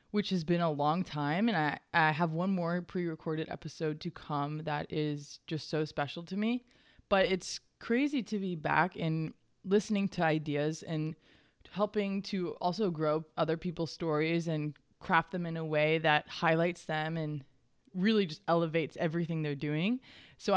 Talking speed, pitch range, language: 170 wpm, 155-185 Hz, English